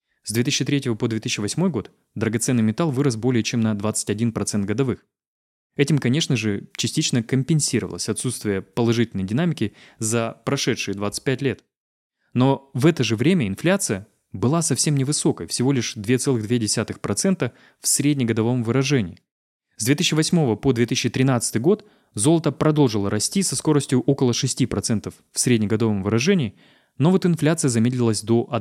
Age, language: 20-39, Russian